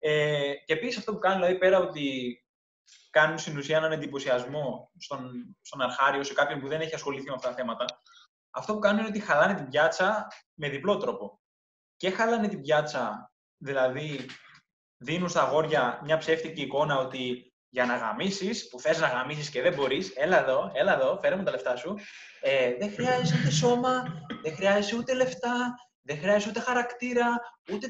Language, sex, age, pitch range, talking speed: Greek, male, 20-39, 150-205 Hz, 175 wpm